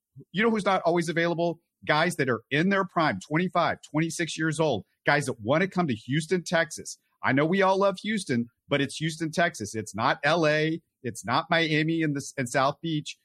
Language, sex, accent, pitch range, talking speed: English, male, American, 135-175 Hz, 205 wpm